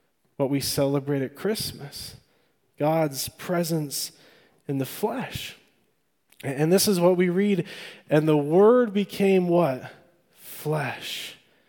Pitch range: 140-175 Hz